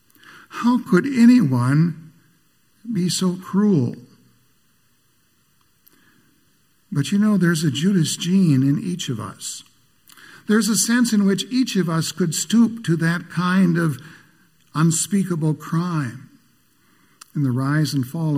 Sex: male